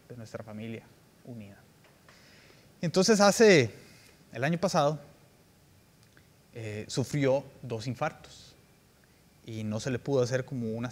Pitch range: 125-160 Hz